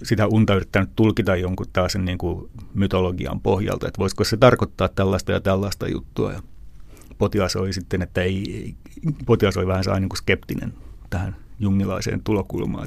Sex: male